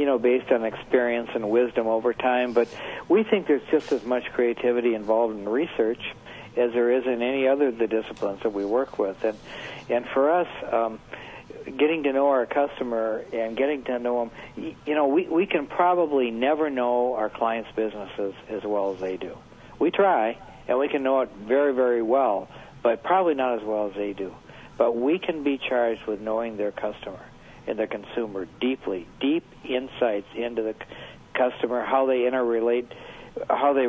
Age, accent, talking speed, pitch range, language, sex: 60-79, American, 185 wpm, 110-135 Hz, English, male